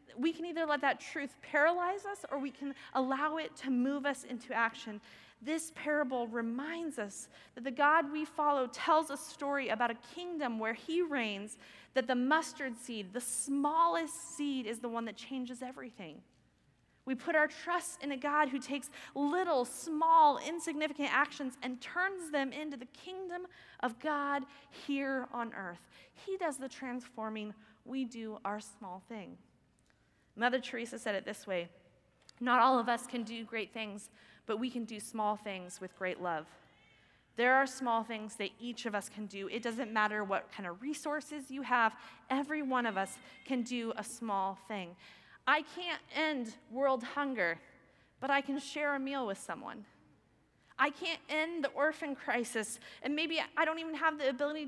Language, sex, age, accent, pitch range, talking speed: English, female, 20-39, American, 230-300 Hz, 175 wpm